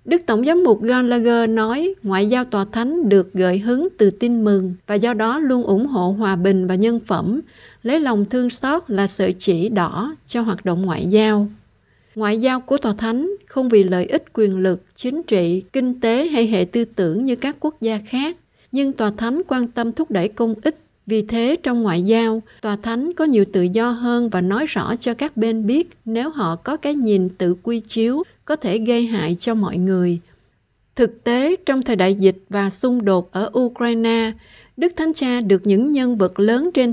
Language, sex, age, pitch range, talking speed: Vietnamese, female, 60-79, 200-255 Hz, 205 wpm